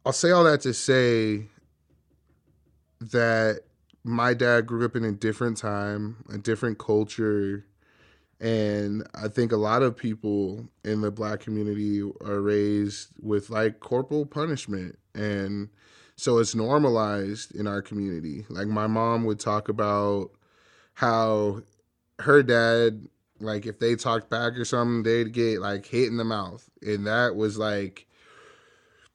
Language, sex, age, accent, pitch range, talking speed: English, male, 20-39, American, 105-120 Hz, 140 wpm